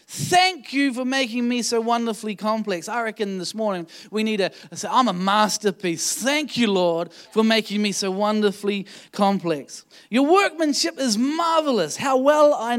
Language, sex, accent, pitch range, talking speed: English, male, Australian, 170-220 Hz, 165 wpm